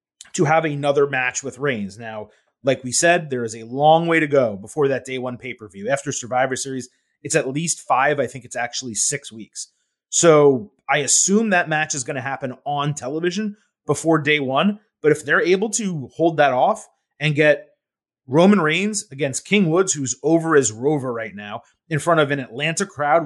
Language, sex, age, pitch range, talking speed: English, male, 30-49, 130-165 Hz, 200 wpm